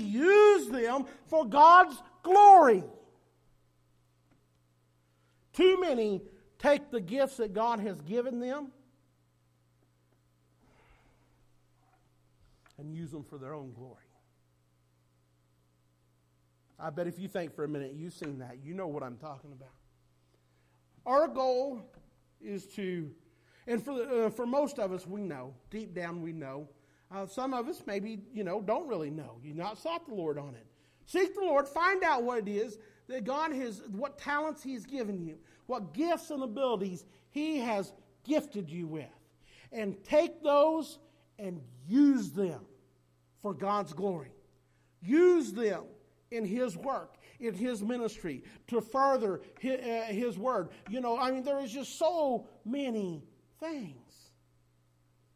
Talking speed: 145 wpm